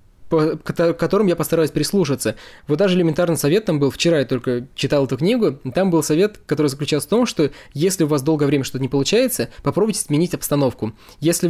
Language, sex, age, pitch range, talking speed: Russian, male, 20-39, 145-185 Hz, 190 wpm